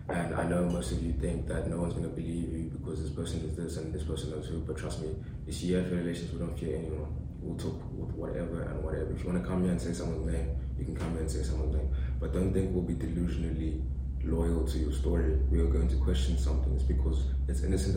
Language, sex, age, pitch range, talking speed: English, male, 20-39, 75-90 Hz, 265 wpm